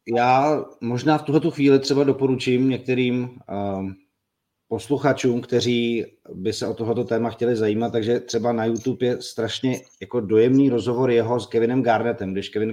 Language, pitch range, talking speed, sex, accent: Czech, 115-130 Hz, 155 wpm, male, native